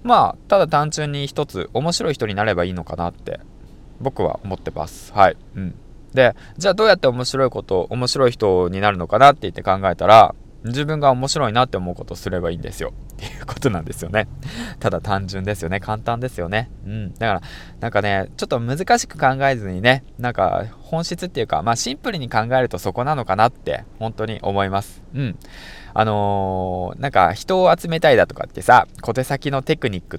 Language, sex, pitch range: Japanese, male, 95-140 Hz